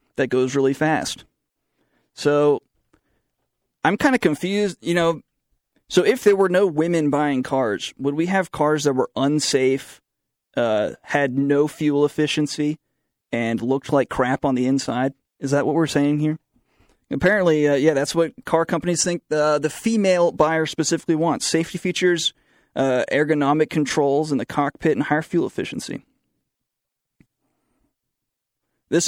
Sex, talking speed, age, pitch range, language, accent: male, 145 wpm, 30-49, 135-165 Hz, English, American